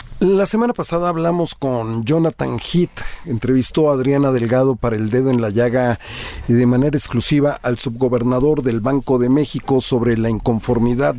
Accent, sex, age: Mexican, male, 40-59